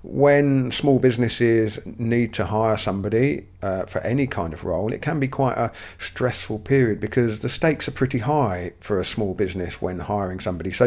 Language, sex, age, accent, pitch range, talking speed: English, male, 50-69, British, 100-120 Hz, 190 wpm